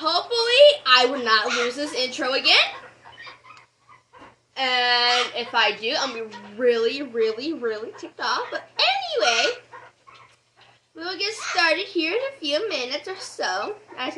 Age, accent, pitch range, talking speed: 10-29, American, 195-310 Hz, 150 wpm